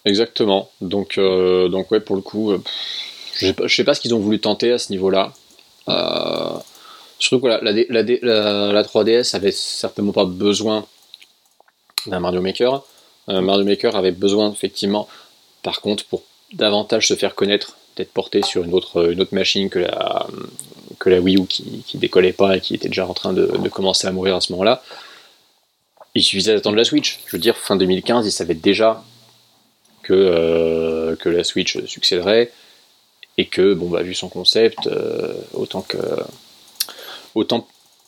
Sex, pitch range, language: male, 95-120 Hz, French